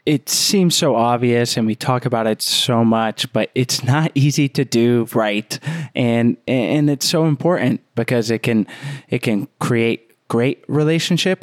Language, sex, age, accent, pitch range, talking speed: English, male, 20-39, American, 115-150 Hz, 165 wpm